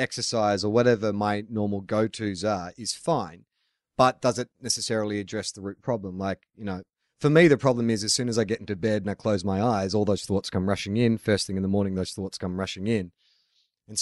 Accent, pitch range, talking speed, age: Australian, 100-125 Hz, 230 wpm, 30-49